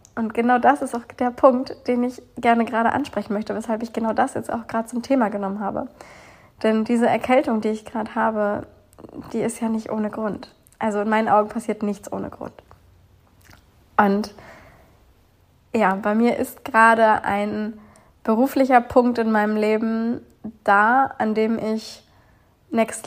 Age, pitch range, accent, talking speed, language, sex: 20-39, 205-230 Hz, German, 160 wpm, German, female